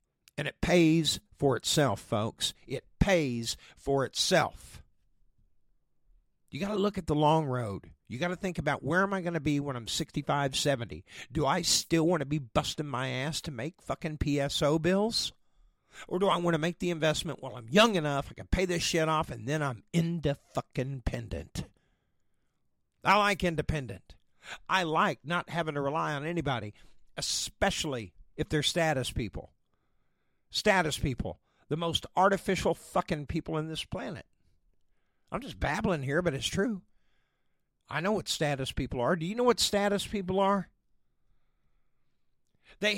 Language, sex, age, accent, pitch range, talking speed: English, male, 50-69, American, 140-180 Hz, 165 wpm